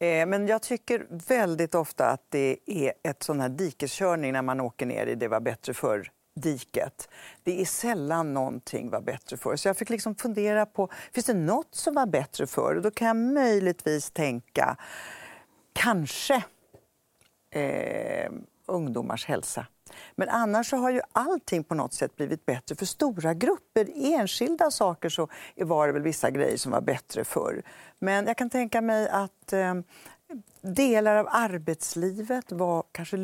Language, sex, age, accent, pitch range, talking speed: English, female, 50-69, Swedish, 165-235 Hz, 160 wpm